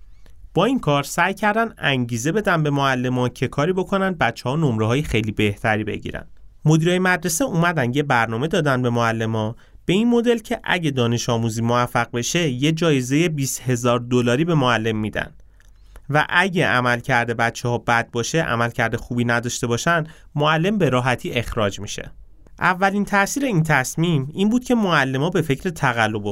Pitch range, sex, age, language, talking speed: 110-160 Hz, male, 30-49, Persian, 170 wpm